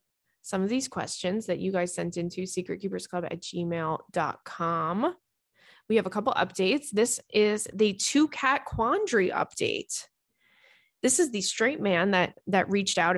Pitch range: 185-240 Hz